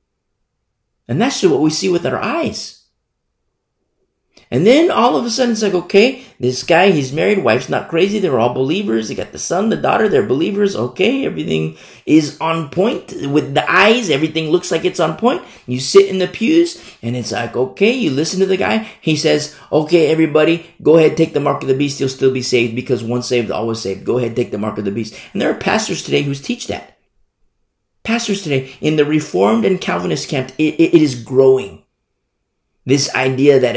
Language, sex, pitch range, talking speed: English, male, 115-165 Hz, 205 wpm